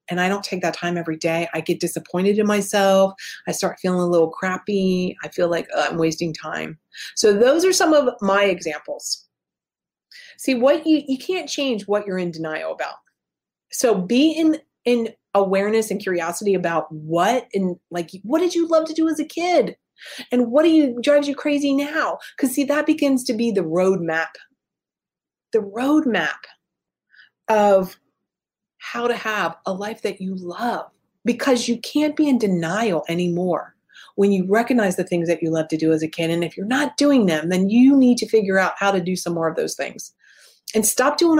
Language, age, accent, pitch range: English, 30-49, American, 175-270 Hz